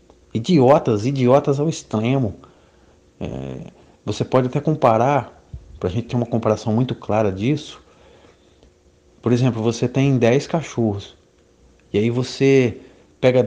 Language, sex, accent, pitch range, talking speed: Portuguese, male, Brazilian, 105-140 Hz, 125 wpm